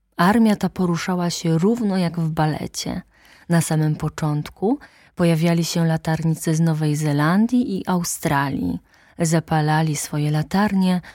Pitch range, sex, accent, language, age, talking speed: 150-200 Hz, female, native, Polish, 20-39, 120 wpm